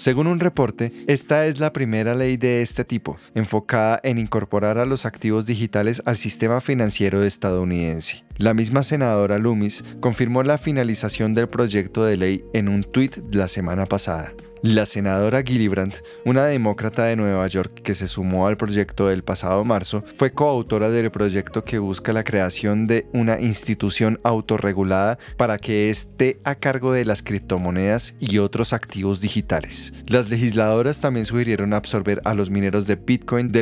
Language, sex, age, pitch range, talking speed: Spanish, male, 20-39, 100-120 Hz, 160 wpm